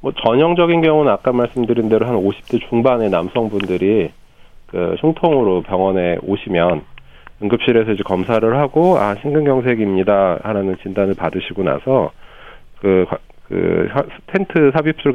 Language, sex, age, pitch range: Korean, male, 40-59, 95-135 Hz